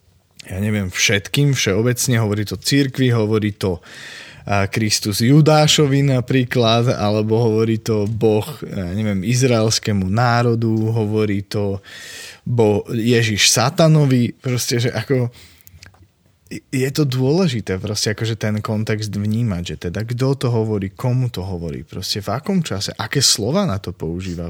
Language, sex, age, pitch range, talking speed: Slovak, male, 20-39, 100-120 Hz, 125 wpm